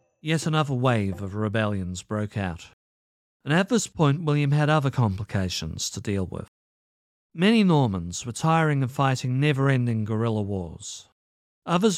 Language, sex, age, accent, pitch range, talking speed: English, male, 40-59, British, 95-150 Hz, 140 wpm